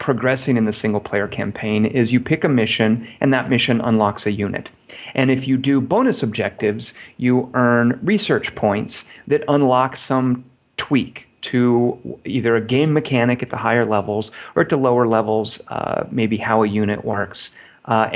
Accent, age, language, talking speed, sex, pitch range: American, 30-49, English, 170 wpm, male, 115-135 Hz